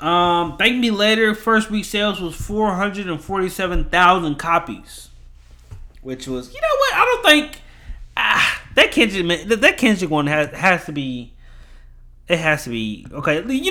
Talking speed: 145 wpm